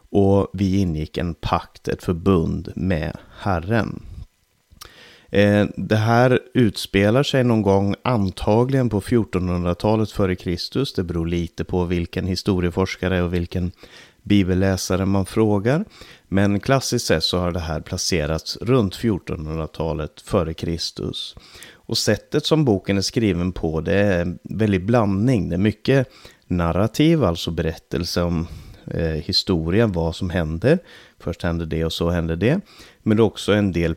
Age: 30-49